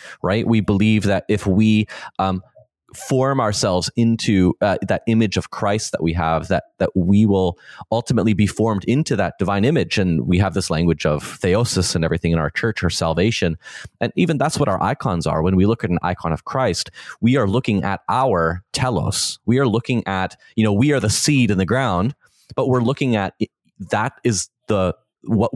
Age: 30-49